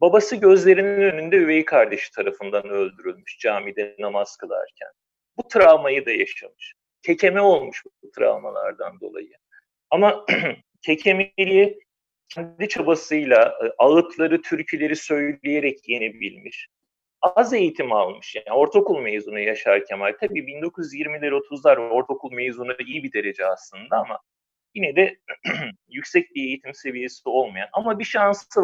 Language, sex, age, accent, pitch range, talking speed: Turkish, male, 40-59, native, 135-205 Hz, 115 wpm